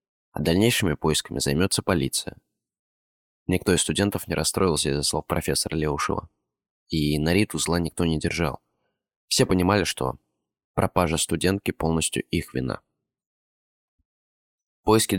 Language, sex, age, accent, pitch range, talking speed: Russian, male, 20-39, native, 80-95 Hz, 120 wpm